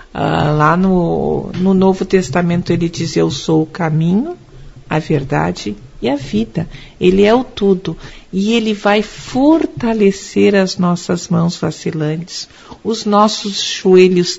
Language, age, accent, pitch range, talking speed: Portuguese, 50-69, Brazilian, 180-235 Hz, 130 wpm